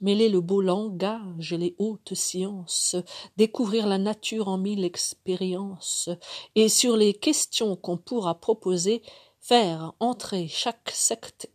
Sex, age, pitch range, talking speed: female, 50-69, 175-220 Hz, 130 wpm